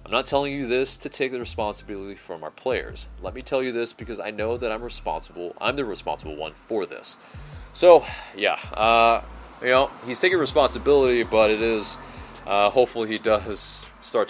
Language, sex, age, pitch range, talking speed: English, male, 30-49, 100-130 Hz, 190 wpm